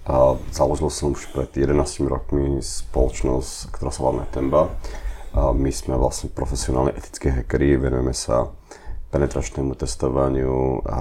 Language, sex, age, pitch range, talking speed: Czech, male, 30-49, 65-75 Hz, 115 wpm